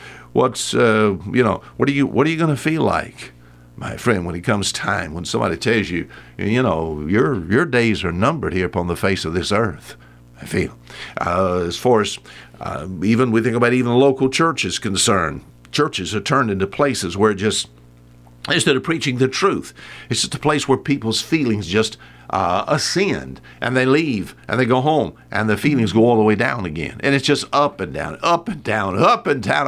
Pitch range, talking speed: 90-145 Hz, 210 wpm